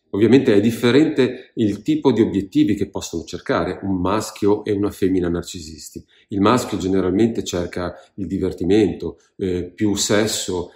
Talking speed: 140 wpm